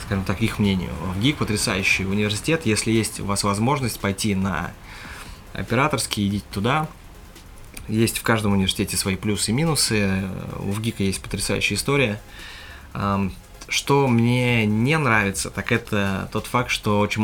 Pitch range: 95-110 Hz